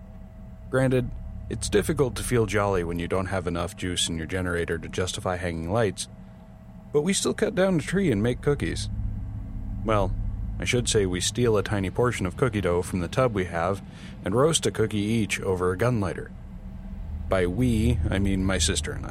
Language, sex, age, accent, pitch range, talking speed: English, male, 30-49, American, 95-115 Hz, 195 wpm